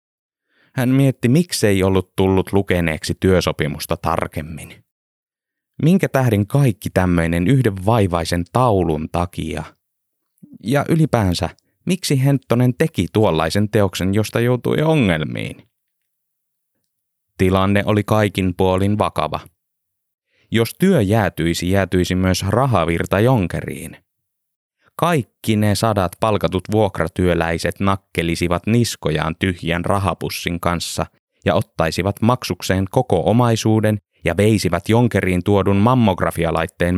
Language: Finnish